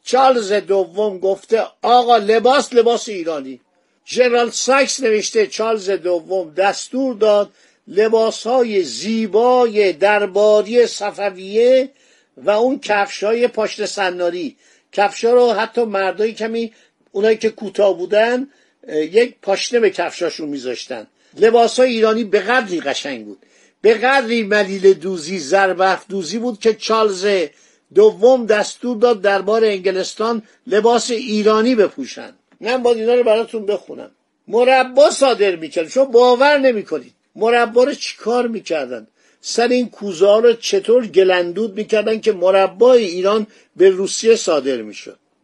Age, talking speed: 50-69, 125 wpm